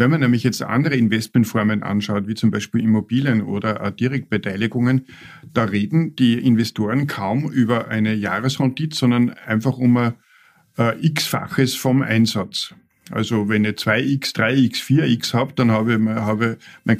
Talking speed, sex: 150 wpm, male